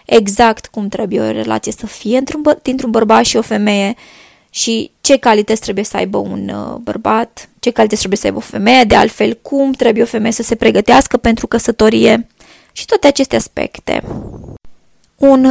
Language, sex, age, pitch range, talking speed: Romanian, female, 20-39, 205-240 Hz, 165 wpm